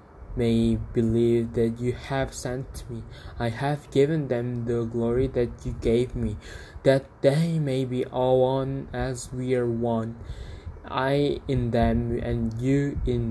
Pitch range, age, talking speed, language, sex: 115-130 Hz, 20-39, 150 wpm, English, male